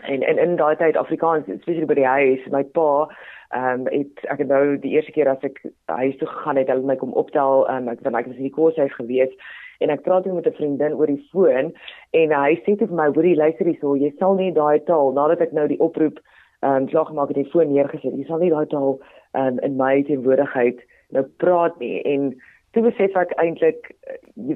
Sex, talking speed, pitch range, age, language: female, 235 wpm, 135-165 Hz, 30-49, English